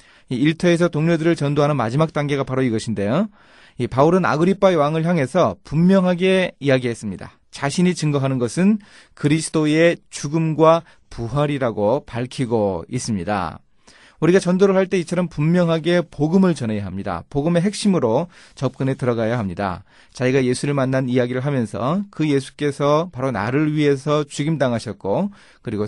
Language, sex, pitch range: Korean, male, 110-160 Hz